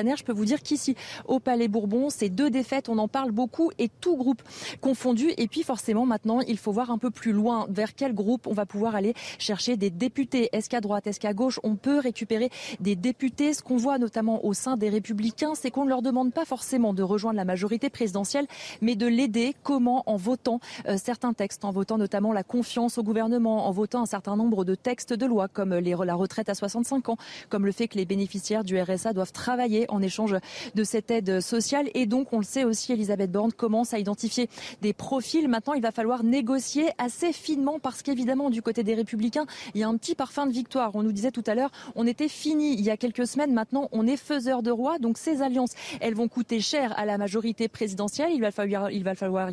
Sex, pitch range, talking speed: female, 210-260 Hz, 230 wpm